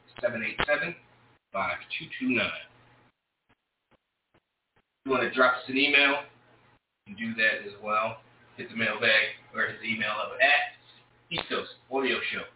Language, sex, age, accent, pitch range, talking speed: English, male, 30-49, American, 120-170 Hz, 115 wpm